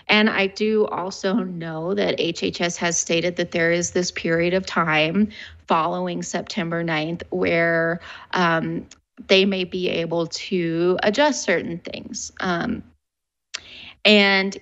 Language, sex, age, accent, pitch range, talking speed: English, female, 20-39, American, 175-215 Hz, 125 wpm